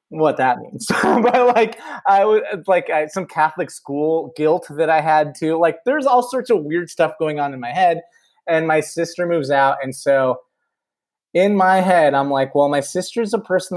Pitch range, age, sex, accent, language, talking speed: 130-185 Hz, 20-39, male, American, English, 200 wpm